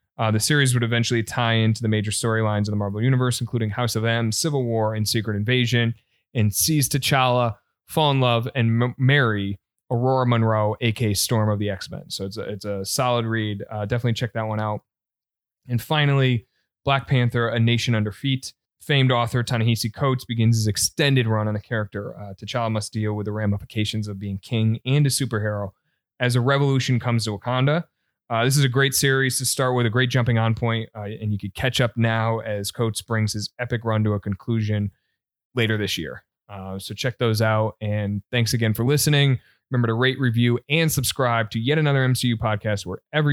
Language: English